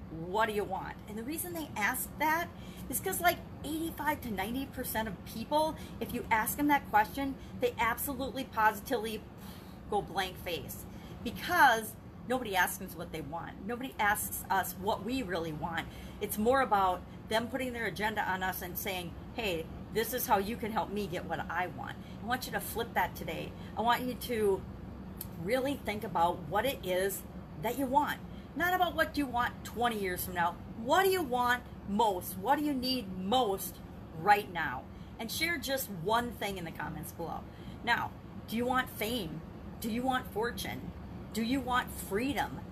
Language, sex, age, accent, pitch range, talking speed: English, female, 40-59, American, 195-265 Hz, 185 wpm